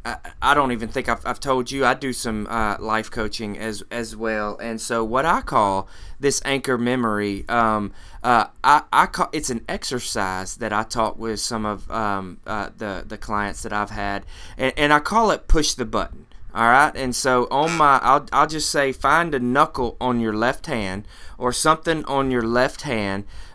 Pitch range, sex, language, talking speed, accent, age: 110-135 Hz, male, English, 200 wpm, American, 20-39